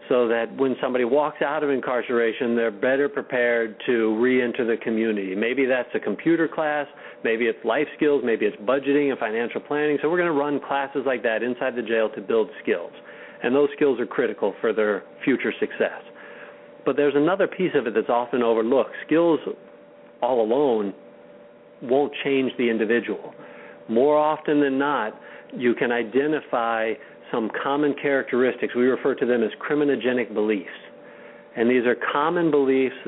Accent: American